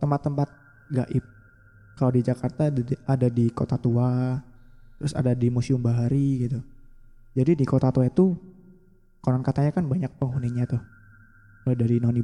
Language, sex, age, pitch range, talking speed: Malay, male, 20-39, 120-140 Hz, 145 wpm